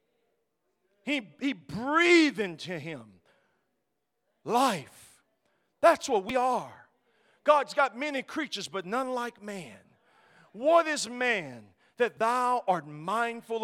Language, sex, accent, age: English, male, American, 50-69